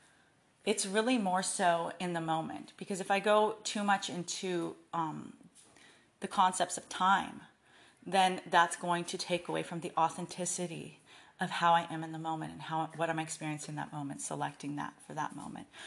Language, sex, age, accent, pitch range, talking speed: English, female, 30-49, American, 160-195 Hz, 180 wpm